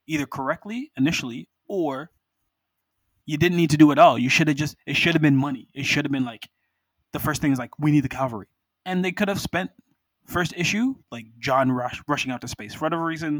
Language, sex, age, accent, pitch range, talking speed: English, male, 20-39, American, 125-155 Hz, 235 wpm